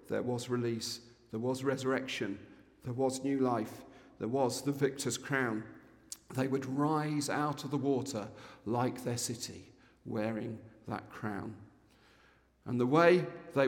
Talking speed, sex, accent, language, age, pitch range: 140 wpm, male, British, English, 50-69, 110-140 Hz